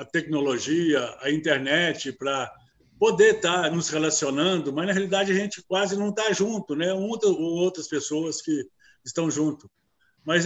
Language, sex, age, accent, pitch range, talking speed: Portuguese, male, 60-79, Brazilian, 150-195 Hz, 155 wpm